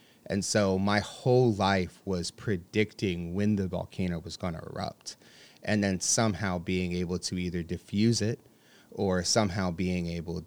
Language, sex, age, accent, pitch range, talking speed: English, male, 30-49, American, 90-105 Hz, 155 wpm